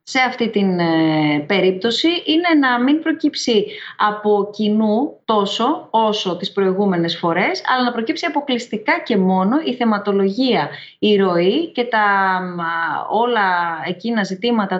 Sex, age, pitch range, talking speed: female, 30-49, 200-260 Hz, 120 wpm